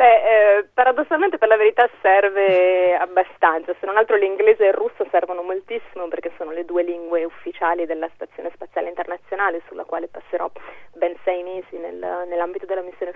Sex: female